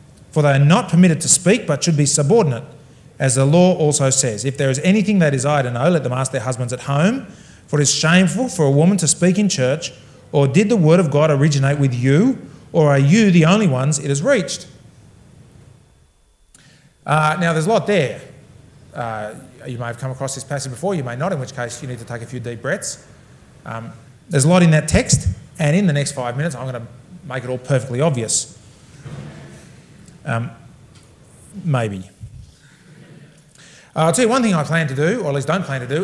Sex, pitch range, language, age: male, 130-165 Hz, English, 30-49